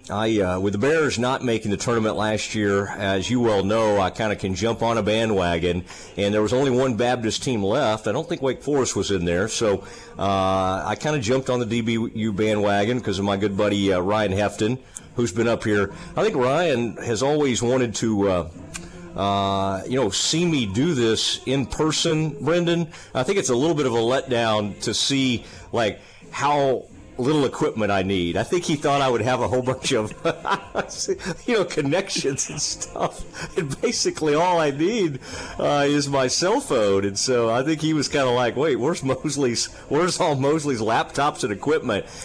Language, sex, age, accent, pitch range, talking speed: English, male, 40-59, American, 100-135 Hz, 200 wpm